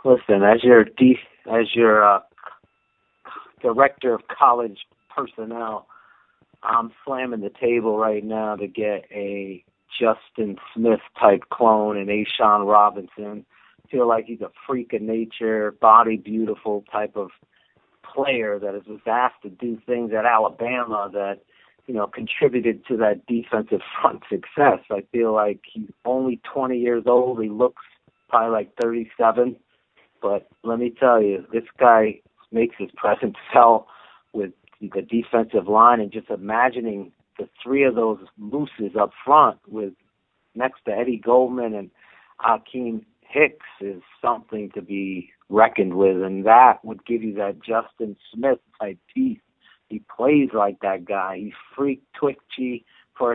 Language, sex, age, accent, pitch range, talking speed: English, male, 40-59, American, 105-120 Hz, 145 wpm